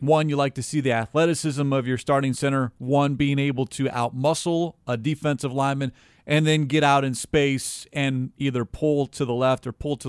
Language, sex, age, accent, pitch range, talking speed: English, male, 40-59, American, 130-155 Hz, 200 wpm